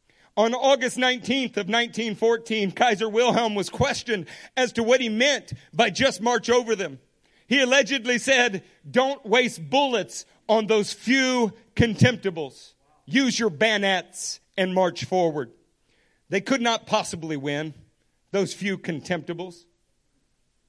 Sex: male